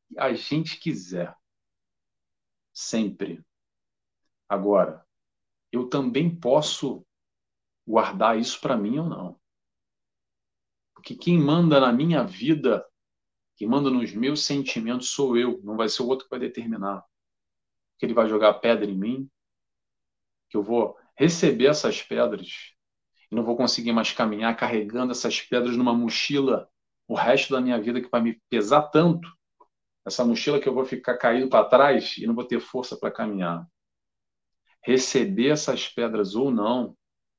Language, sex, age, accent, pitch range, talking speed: Portuguese, male, 40-59, Brazilian, 100-130 Hz, 145 wpm